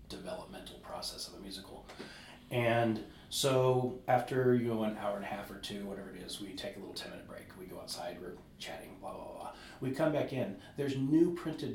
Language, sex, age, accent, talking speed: Finnish, male, 40-59, American, 215 wpm